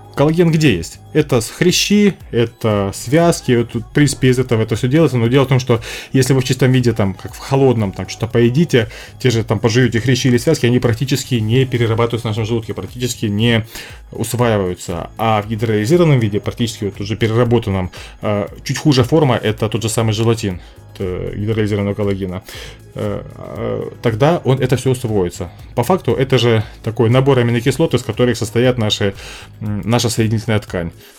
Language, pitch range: Russian, 105-130 Hz